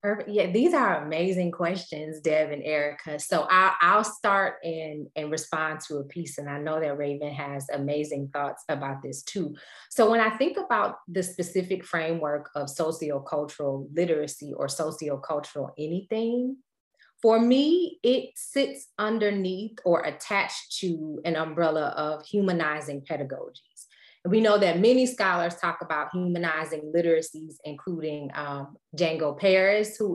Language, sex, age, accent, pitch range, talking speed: English, female, 30-49, American, 155-205 Hz, 135 wpm